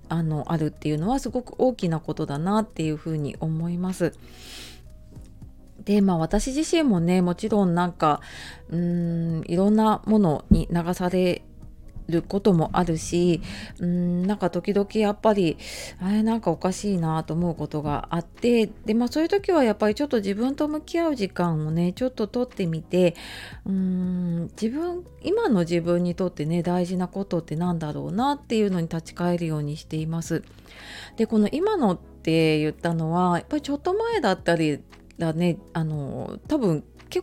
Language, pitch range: Japanese, 160-220 Hz